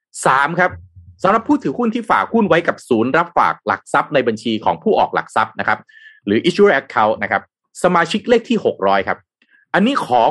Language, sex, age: Thai, male, 30-49